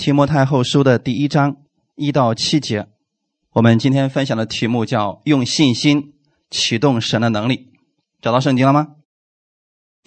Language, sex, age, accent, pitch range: Chinese, male, 20-39, native, 120-155 Hz